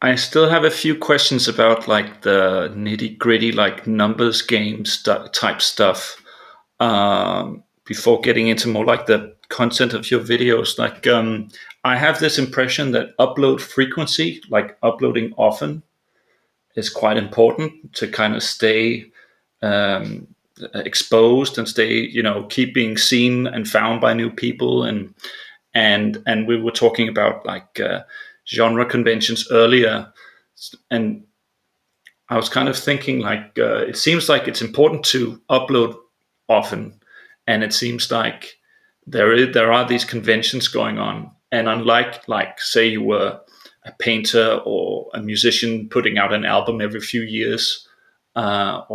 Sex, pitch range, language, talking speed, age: male, 110-130 Hz, English, 145 wpm, 30-49